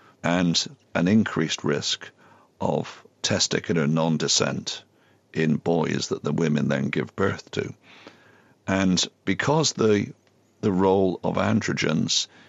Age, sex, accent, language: 50-69, male, British, English